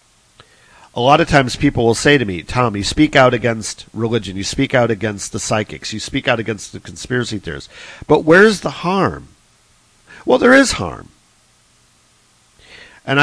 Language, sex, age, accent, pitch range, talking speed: English, male, 50-69, American, 105-130 Hz, 170 wpm